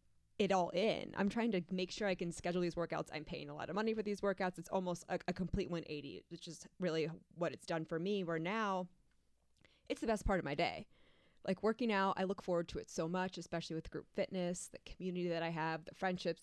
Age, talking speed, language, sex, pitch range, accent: 20-39, 240 wpm, English, female, 155-195 Hz, American